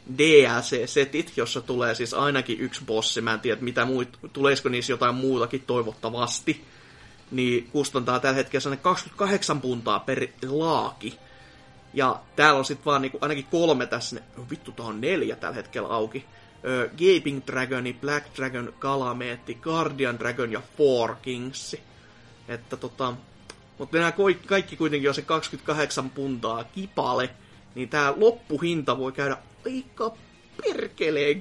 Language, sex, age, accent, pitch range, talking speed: Finnish, male, 30-49, native, 125-170 Hz, 130 wpm